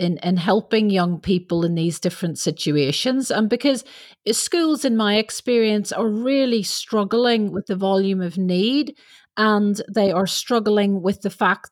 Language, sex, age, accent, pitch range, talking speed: English, female, 40-59, British, 185-230 Hz, 155 wpm